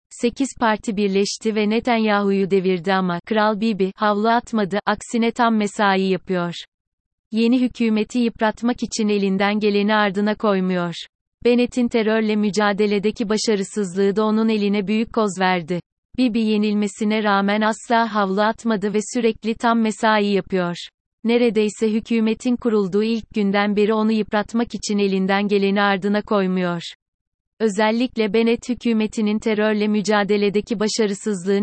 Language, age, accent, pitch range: Turkish, 30-49, native, 200-225 Hz